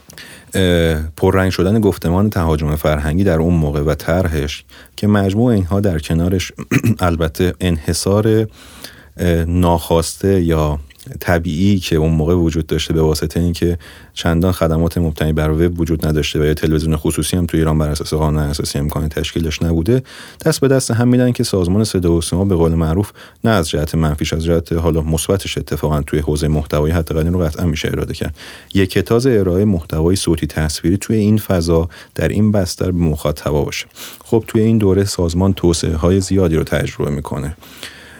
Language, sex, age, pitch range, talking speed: Persian, male, 30-49, 75-95 Hz, 165 wpm